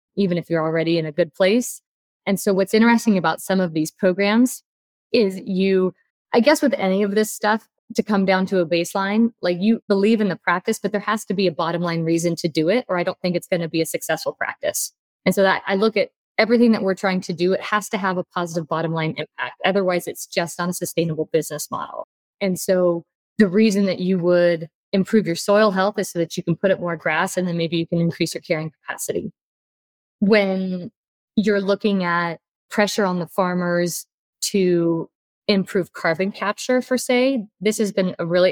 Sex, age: female, 20-39